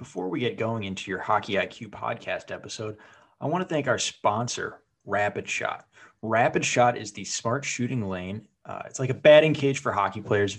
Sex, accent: male, American